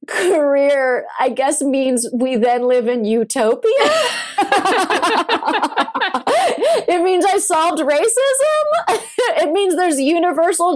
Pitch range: 200-305 Hz